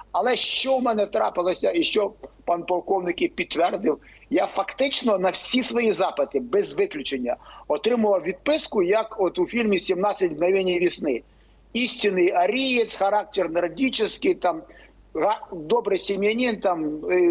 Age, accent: 50-69, native